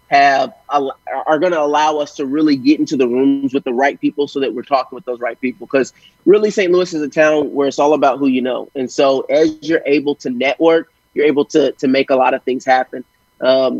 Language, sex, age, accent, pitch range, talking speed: English, male, 30-49, American, 135-165 Hz, 245 wpm